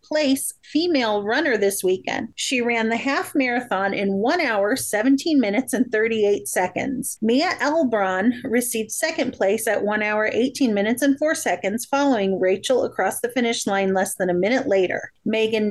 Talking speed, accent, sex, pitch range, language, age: 165 wpm, American, female, 210-275 Hz, English, 30-49